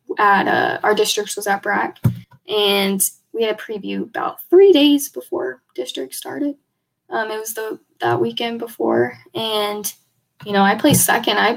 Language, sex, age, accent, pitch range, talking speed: English, female, 10-29, American, 195-220 Hz, 170 wpm